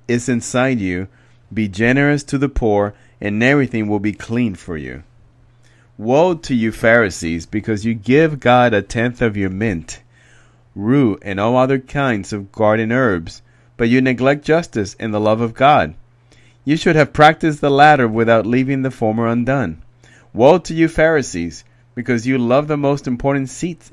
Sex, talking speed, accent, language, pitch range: male, 170 wpm, American, English, 110-130 Hz